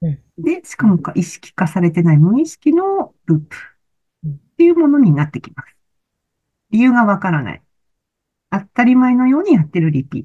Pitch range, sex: 160-250 Hz, female